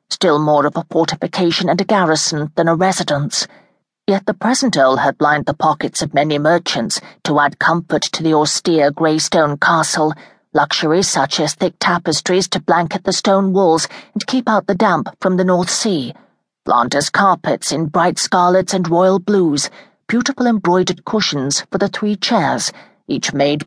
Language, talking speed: English, 170 wpm